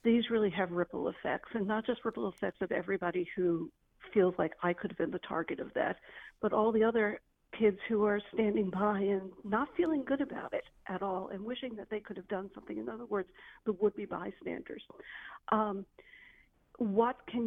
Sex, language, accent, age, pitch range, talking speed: female, English, American, 50-69, 200-245 Hz, 195 wpm